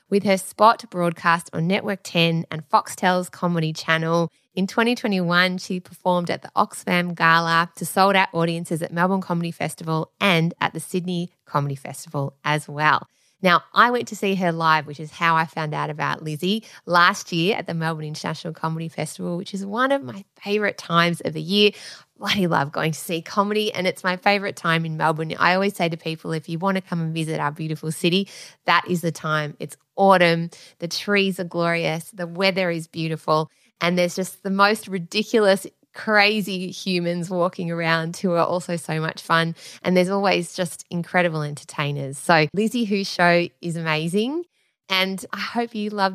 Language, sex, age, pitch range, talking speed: English, female, 20-39, 160-200 Hz, 185 wpm